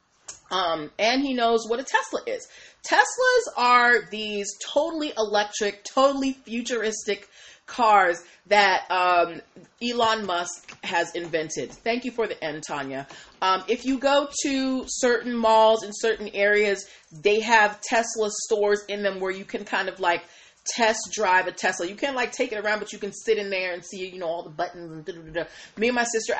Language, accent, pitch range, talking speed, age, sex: English, American, 180-255 Hz, 175 wpm, 30-49, female